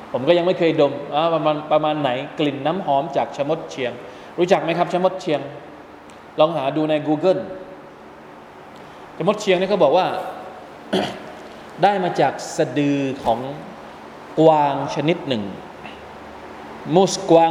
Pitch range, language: 155-205 Hz, Thai